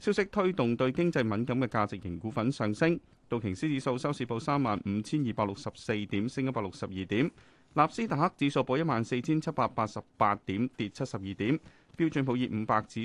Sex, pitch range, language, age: male, 105-140 Hz, Chinese, 30-49